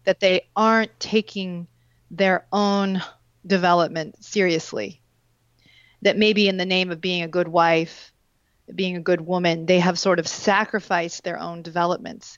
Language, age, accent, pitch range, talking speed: English, 40-59, American, 170-200 Hz, 145 wpm